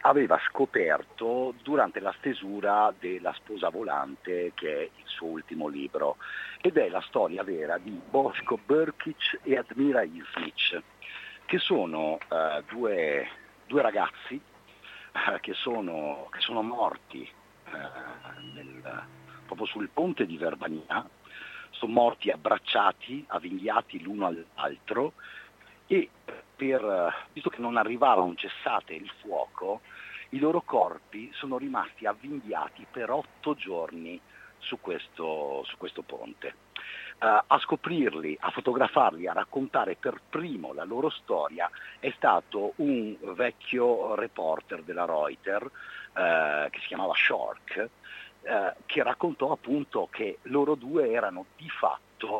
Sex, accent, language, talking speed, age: male, native, Italian, 115 wpm, 50-69